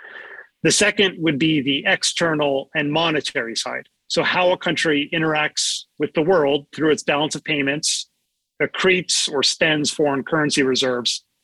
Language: English